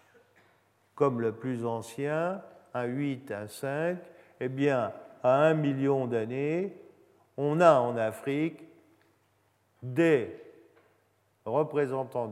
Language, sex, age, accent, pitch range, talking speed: French, male, 50-69, French, 110-145 Hz, 95 wpm